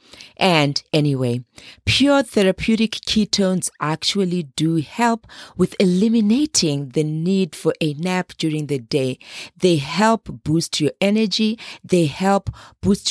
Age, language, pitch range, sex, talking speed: 40-59, English, 150-205 Hz, female, 120 wpm